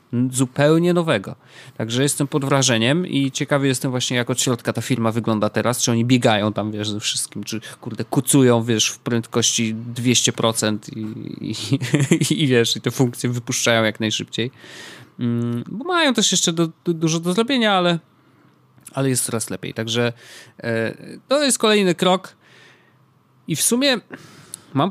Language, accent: Polish, native